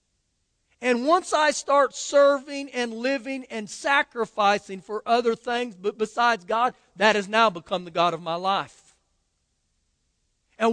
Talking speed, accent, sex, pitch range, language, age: 135 wpm, American, male, 200-270 Hz, English, 50-69